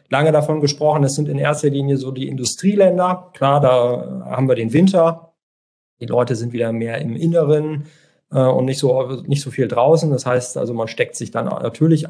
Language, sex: German, male